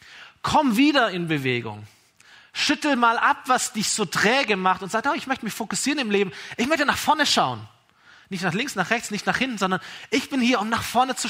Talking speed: 225 wpm